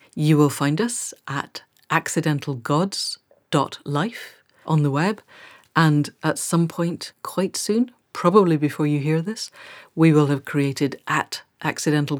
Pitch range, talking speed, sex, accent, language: 145-180 Hz, 130 wpm, female, British, English